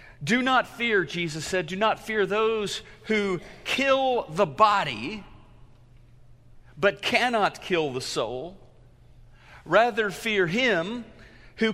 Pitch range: 125-205 Hz